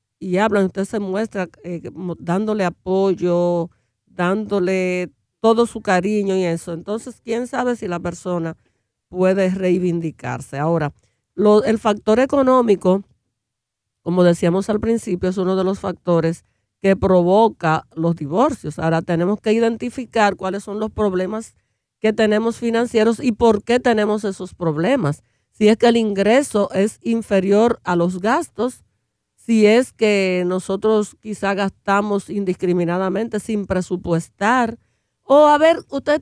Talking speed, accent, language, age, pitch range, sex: 130 wpm, American, Spanish, 50-69, 175-225 Hz, female